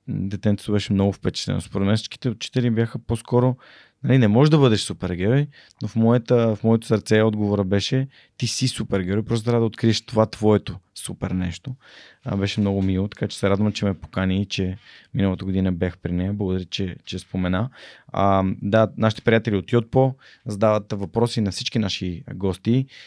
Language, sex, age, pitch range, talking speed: Bulgarian, male, 20-39, 95-115 Hz, 180 wpm